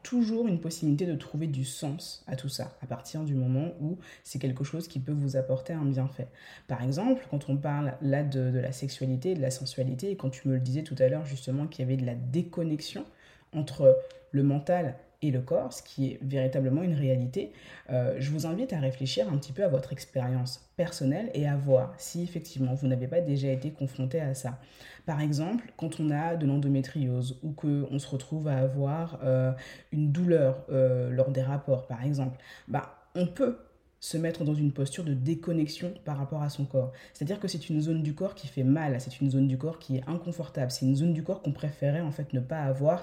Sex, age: female, 20-39